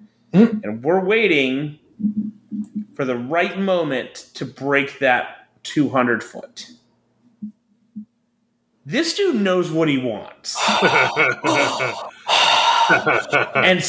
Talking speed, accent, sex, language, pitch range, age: 80 wpm, American, male, English, 140-215 Hz, 30-49